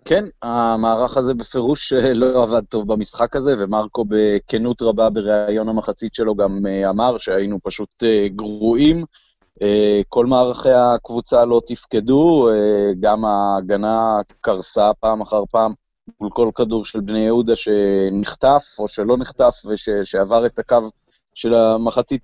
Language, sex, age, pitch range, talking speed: Hebrew, male, 30-49, 105-120 Hz, 120 wpm